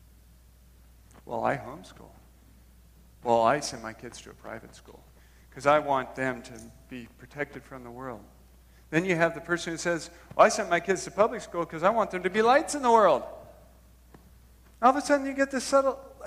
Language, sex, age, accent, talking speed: English, male, 40-59, American, 205 wpm